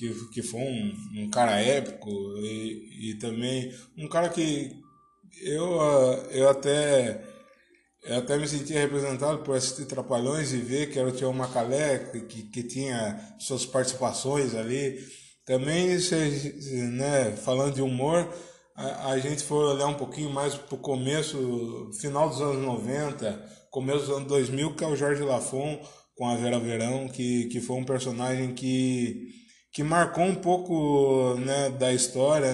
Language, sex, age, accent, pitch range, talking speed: Portuguese, male, 20-39, Brazilian, 125-150 Hz, 150 wpm